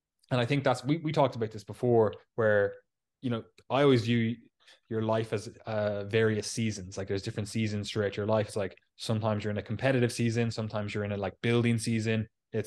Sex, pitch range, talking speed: male, 105-120 Hz, 215 wpm